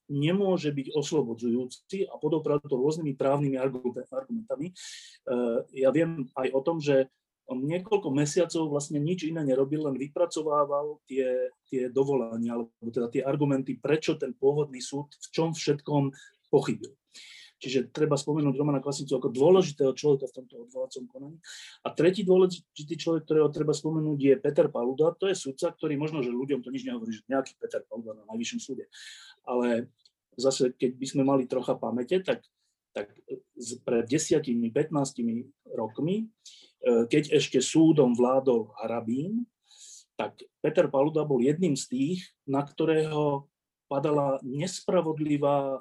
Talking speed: 140 wpm